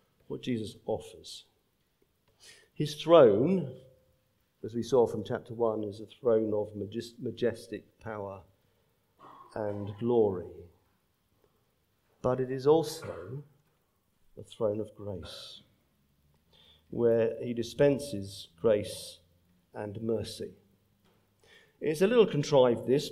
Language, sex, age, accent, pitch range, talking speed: English, male, 50-69, British, 100-135 Hz, 100 wpm